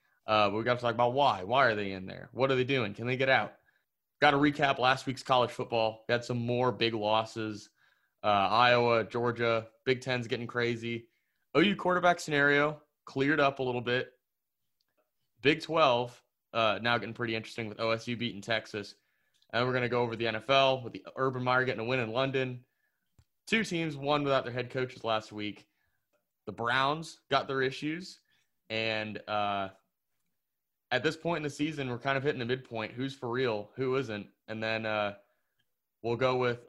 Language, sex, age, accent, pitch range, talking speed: English, male, 20-39, American, 115-135 Hz, 185 wpm